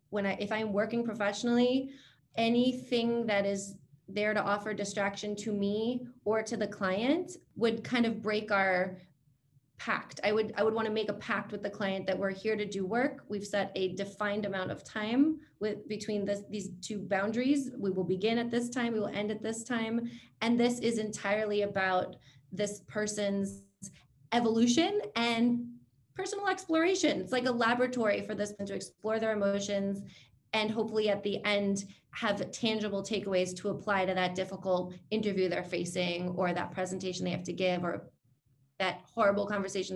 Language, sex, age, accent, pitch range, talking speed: English, female, 30-49, American, 190-230 Hz, 175 wpm